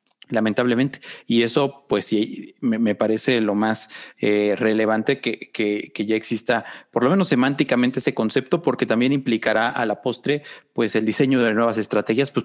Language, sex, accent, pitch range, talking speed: Spanish, male, Mexican, 110-140 Hz, 175 wpm